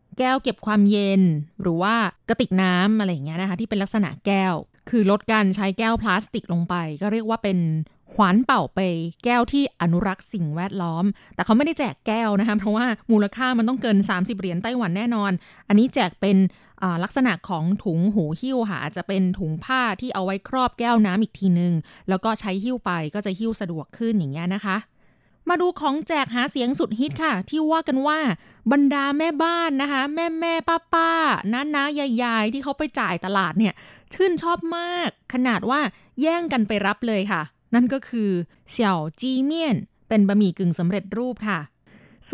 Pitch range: 190-255 Hz